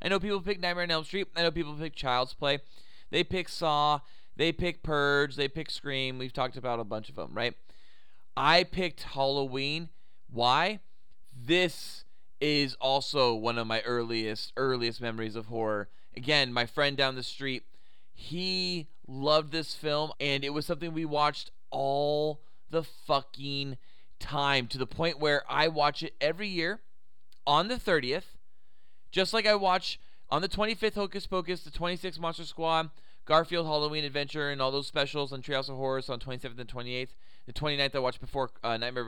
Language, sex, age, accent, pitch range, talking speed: English, male, 20-39, American, 120-160 Hz, 170 wpm